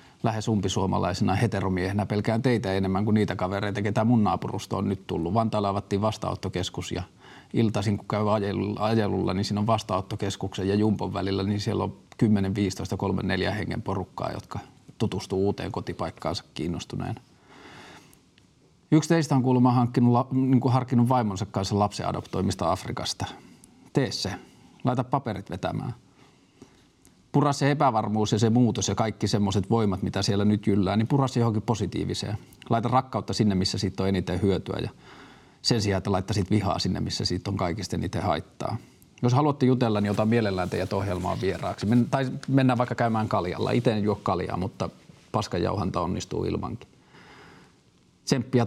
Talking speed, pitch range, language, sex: 150 wpm, 95-120 Hz, Finnish, male